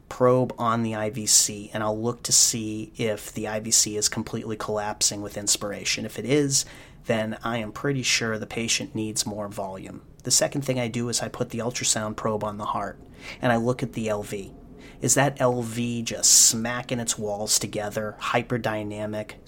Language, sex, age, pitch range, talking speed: English, male, 30-49, 105-125 Hz, 180 wpm